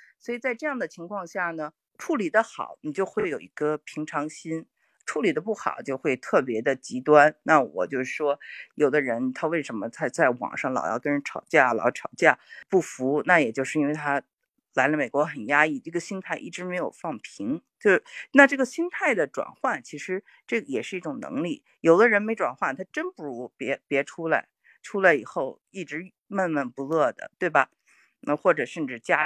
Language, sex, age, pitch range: Chinese, female, 50-69, 150-205 Hz